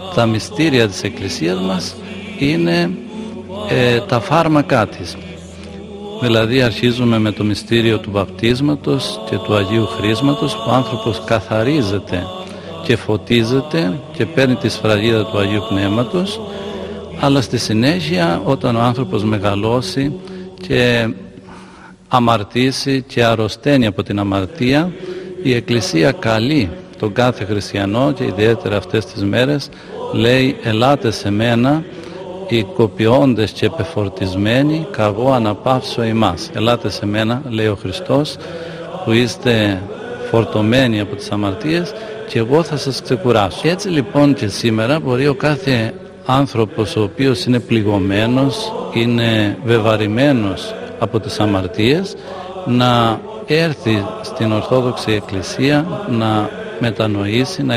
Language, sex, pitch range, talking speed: Greek, male, 105-140 Hz, 115 wpm